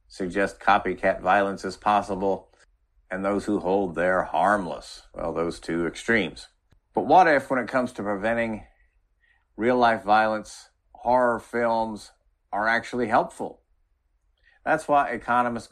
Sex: male